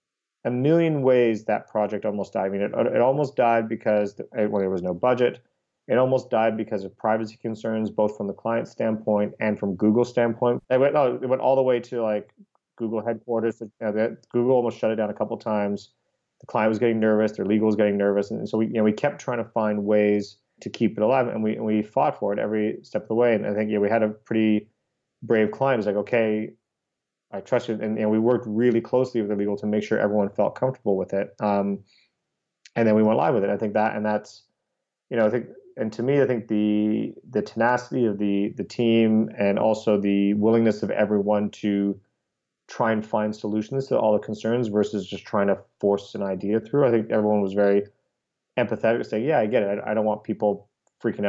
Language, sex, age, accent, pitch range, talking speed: English, male, 30-49, American, 105-115 Hz, 230 wpm